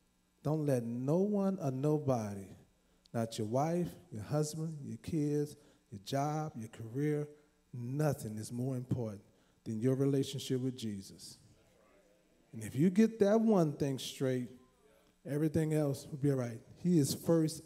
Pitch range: 120-165 Hz